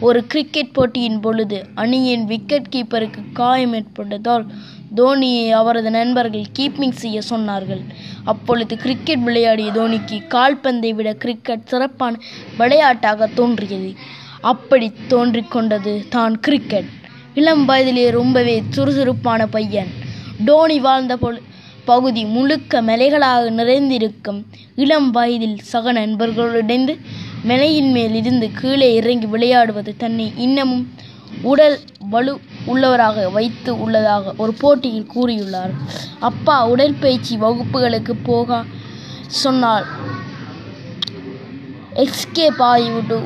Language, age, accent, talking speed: Tamil, 20-39, native, 90 wpm